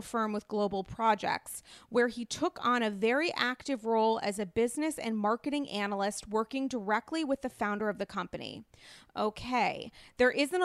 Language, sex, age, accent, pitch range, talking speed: English, female, 30-49, American, 220-275 Hz, 165 wpm